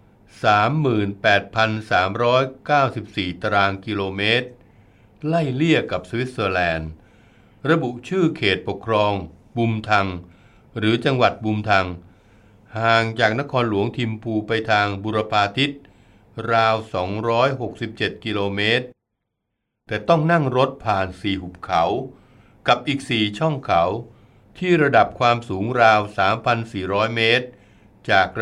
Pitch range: 100-120 Hz